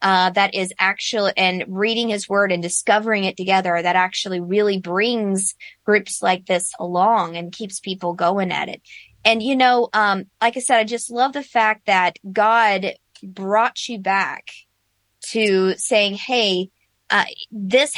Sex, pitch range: female, 190-250 Hz